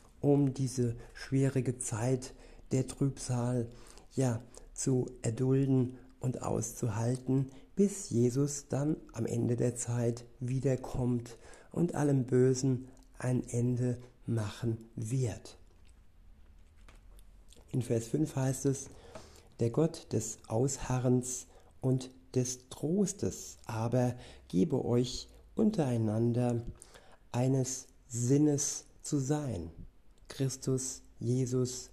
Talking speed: 90 wpm